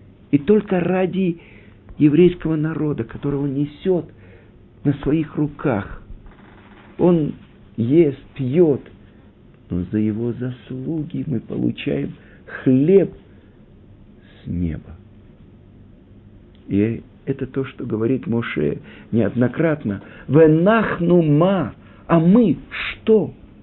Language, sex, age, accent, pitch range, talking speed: Russian, male, 50-69, native, 100-155 Hz, 85 wpm